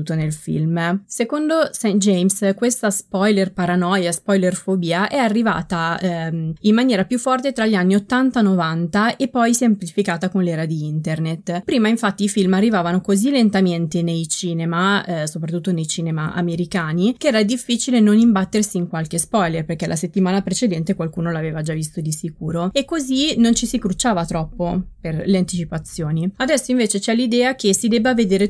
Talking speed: 170 wpm